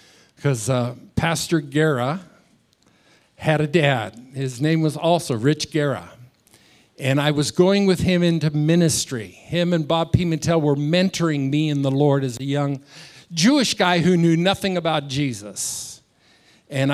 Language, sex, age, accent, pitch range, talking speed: English, male, 50-69, American, 145-185 Hz, 145 wpm